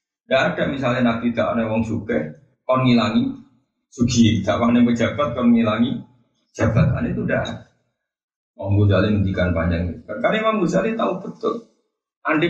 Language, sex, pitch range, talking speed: Indonesian, male, 105-170 Hz, 135 wpm